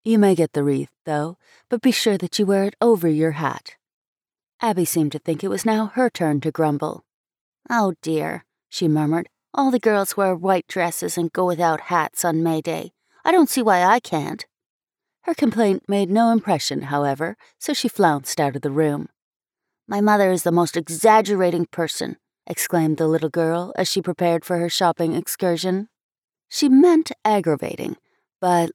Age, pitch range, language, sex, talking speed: 30-49, 160-215 Hz, English, female, 175 wpm